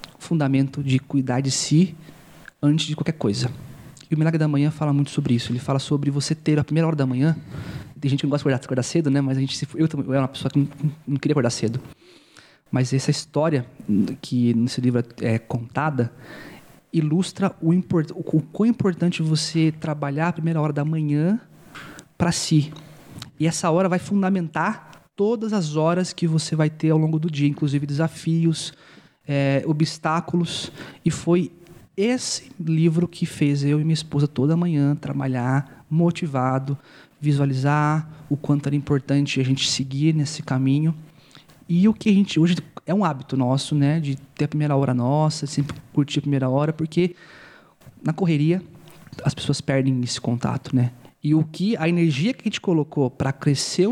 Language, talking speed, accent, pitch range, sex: Portuguese, 185 wpm, Brazilian, 140-165 Hz, male